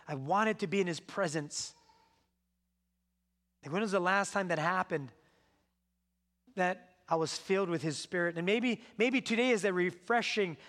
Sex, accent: male, American